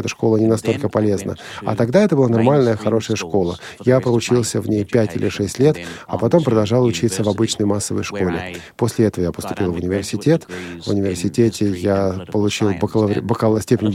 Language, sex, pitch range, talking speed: Russian, male, 100-120 Hz, 170 wpm